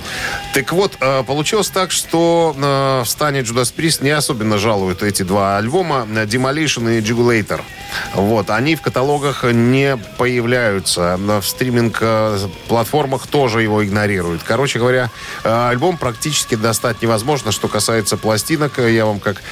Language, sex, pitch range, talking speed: Russian, male, 105-140 Hz, 125 wpm